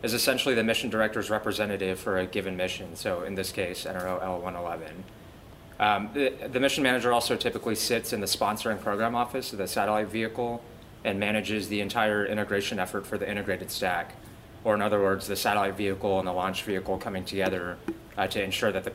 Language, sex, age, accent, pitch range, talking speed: English, male, 20-39, American, 95-110 Hz, 195 wpm